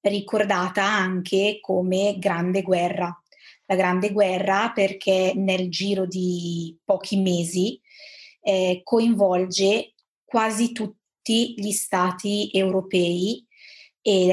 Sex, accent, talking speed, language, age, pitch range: female, native, 90 wpm, Italian, 20-39, 180-205 Hz